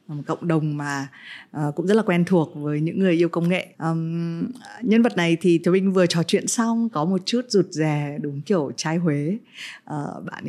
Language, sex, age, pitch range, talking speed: Vietnamese, female, 20-39, 155-195 Hz, 215 wpm